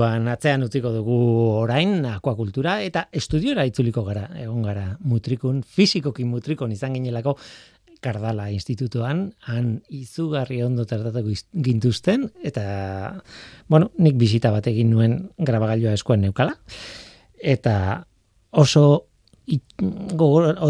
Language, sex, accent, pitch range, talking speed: Spanish, male, Spanish, 115-150 Hz, 100 wpm